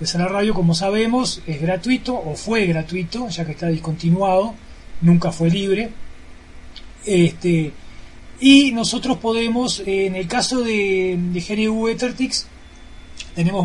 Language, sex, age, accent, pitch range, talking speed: Spanish, male, 30-49, Argentinian, 170-215 Hz, 130 wpm